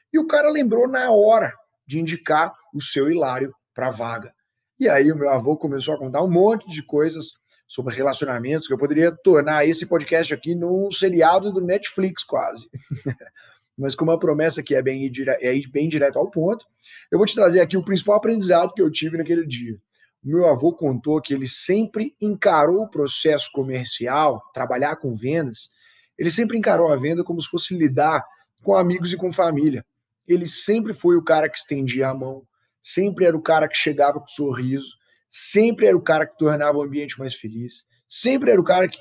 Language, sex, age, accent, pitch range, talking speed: Portuguese, male, 20-39, Brazilian, 140-195 Hz, 200 wpm